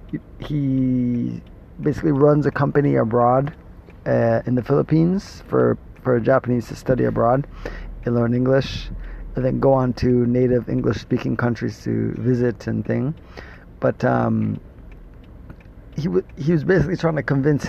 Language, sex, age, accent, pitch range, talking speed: English, male, 30-49, American, 115-140 Hz, 140 wpm